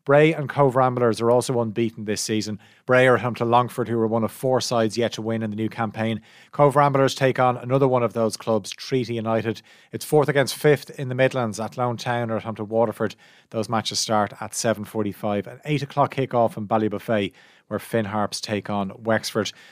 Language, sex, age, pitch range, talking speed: English, male, 30-49, 105-125 Hz, 215 wpm